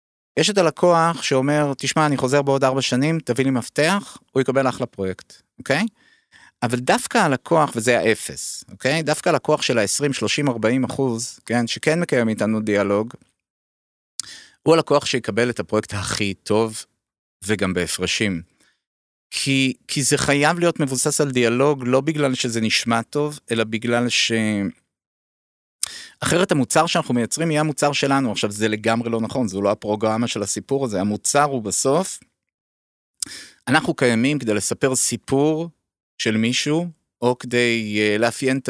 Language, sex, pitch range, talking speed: Hebrew, male, 110-150 Hz, 145 wpm